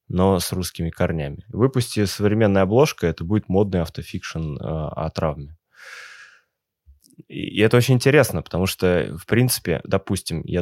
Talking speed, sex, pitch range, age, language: 130 wpm, male, 90-110 Hz, 20-39, Russian